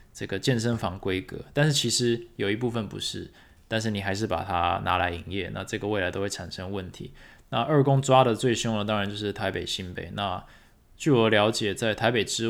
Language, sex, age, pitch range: Chinese, male, 20-39, 100-125 Hz